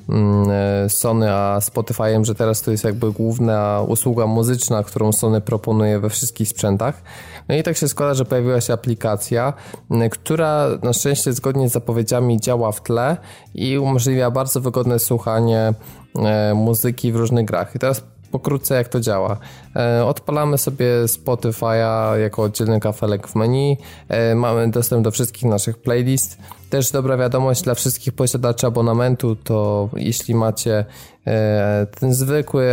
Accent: native